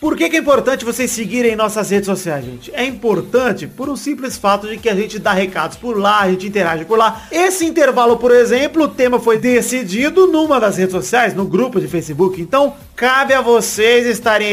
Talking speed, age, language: 210 wpm, 30-49, Portuguese